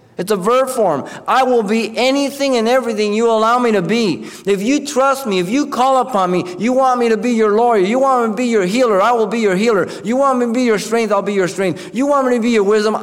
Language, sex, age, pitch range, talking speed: English, male, 50-69, 165-230 Hz, 280 wpm